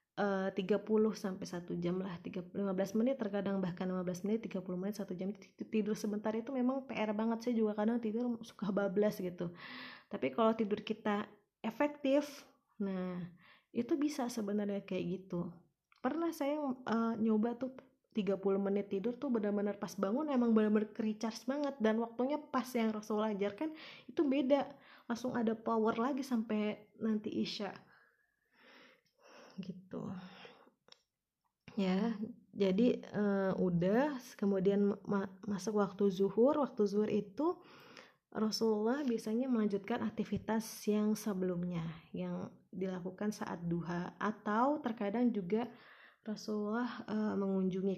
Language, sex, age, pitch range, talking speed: Indonesian, female, 20-39, 195-235 Hz, 125 wpm